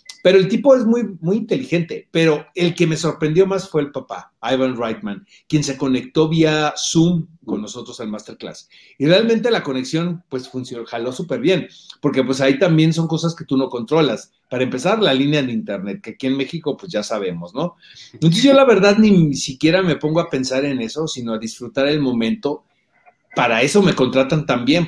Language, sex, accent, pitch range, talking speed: Spanish, male, Mexican, 125-170 Hz, 200 wpm